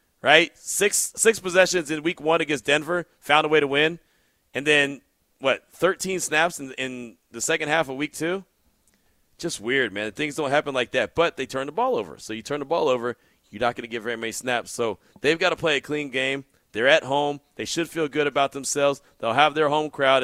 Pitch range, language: 125-155 Hz, English